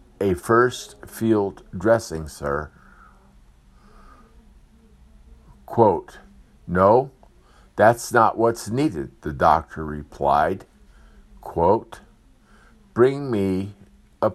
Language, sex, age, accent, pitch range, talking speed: English, male, 50-69, American, 85-115 Hz, 75 wpm